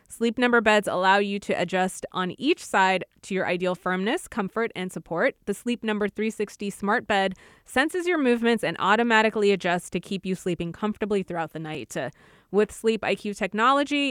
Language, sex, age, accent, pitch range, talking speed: English, female, 20-39, American, 190-240 Hz, 180 wpm